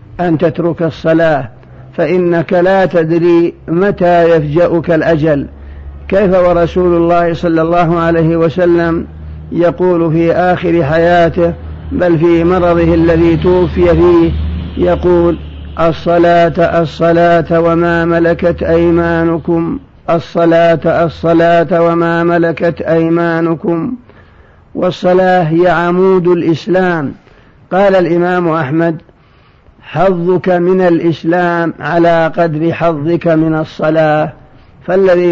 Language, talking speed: Arabic, 90 wpm